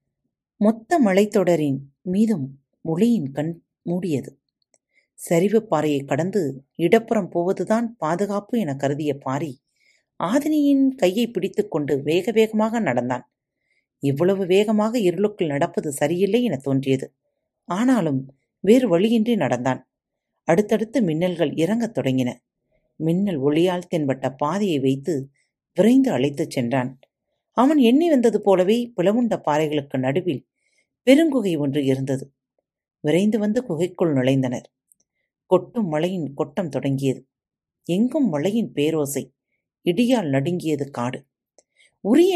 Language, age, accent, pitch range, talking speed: Tamil, 40-59, native, 140-225 Hz, 100 wpm